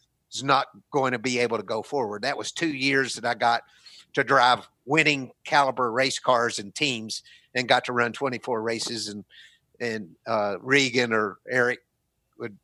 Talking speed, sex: 175 wpm, male